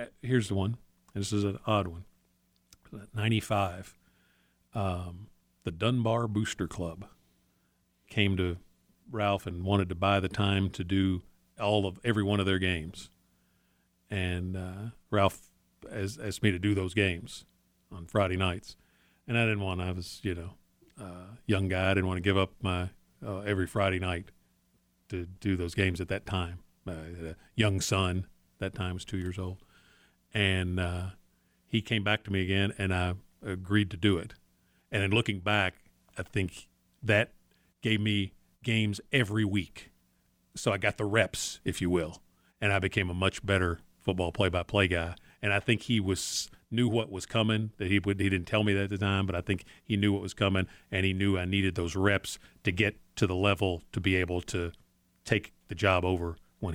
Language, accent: English, American